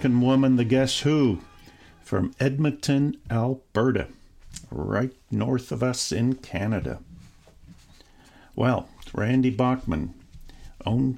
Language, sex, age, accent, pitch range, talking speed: English, male, 50-69, American, 110-135 Hz, 90 wpm